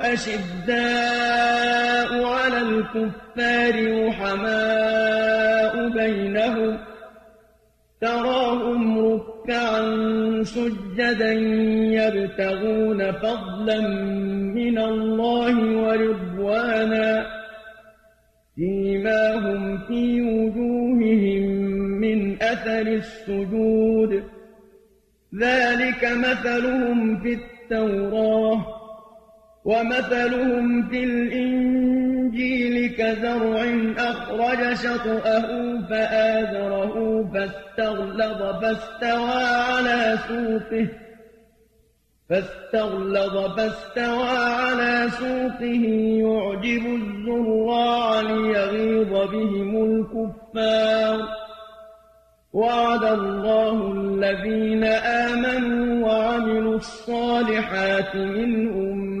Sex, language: male, Arabic